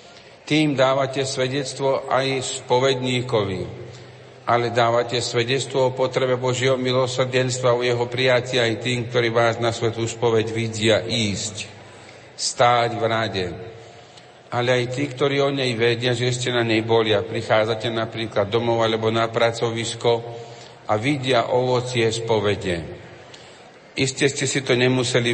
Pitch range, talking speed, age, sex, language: 115-130 Hz, 130 wpm, 50-69, male, Slovak